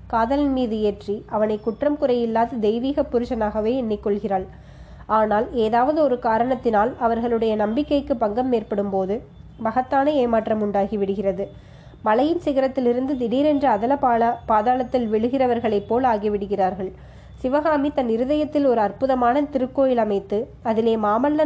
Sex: female